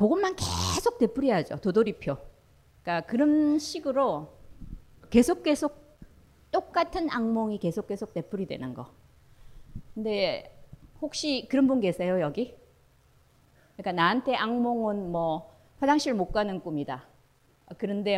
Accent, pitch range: native, 165-250 Hz